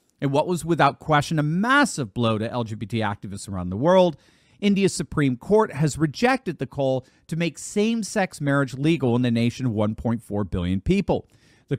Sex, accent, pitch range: male, American, 115-165 Hz